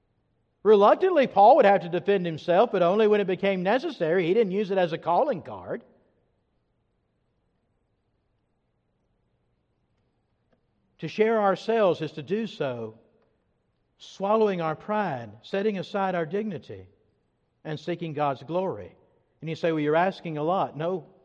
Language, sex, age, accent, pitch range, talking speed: English, male, 60-79, American, 155-210 Hz, 135 wpm